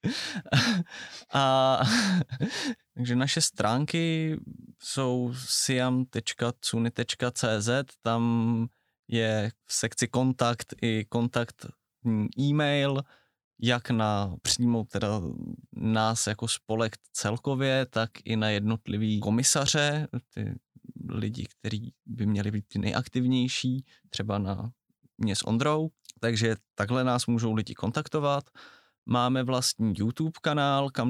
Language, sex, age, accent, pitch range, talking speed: Czech, male, 20-39, native, 115-135 Hz, 100 wpm